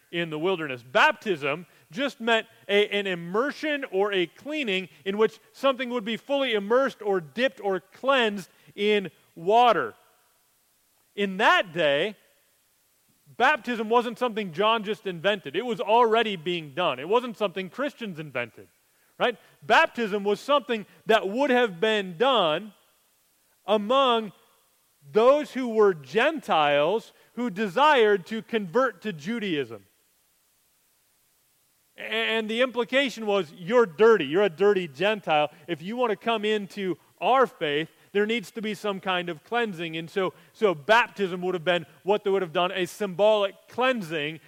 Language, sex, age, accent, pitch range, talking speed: English, male, 30-49, American, 165-225 Hz, 140 wpm